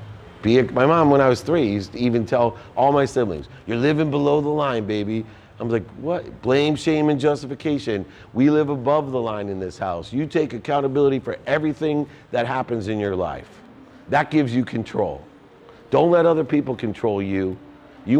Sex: male